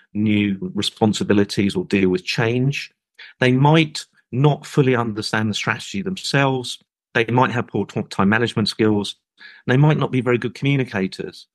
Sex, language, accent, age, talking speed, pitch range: male, English, British, 40-59, 145 wpm, 100-140 Hz